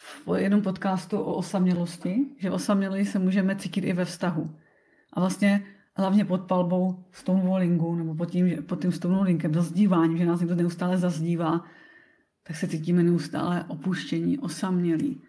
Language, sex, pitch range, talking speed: Czech, female, 180-200 Hz, 140 wpm